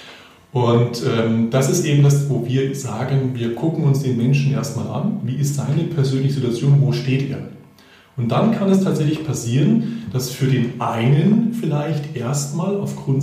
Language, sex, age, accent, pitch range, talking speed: German, male, 40-59, German, 125-155 Hz, 170 wpm